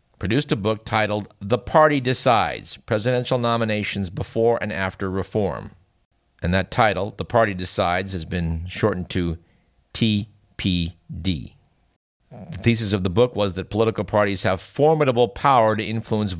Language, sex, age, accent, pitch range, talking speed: English, male, 50-69, American, 95-115 Hz, 140 wpm